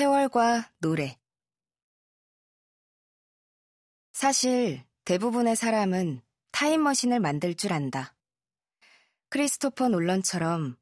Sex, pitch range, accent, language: female, 155-240 Hz, native, Korean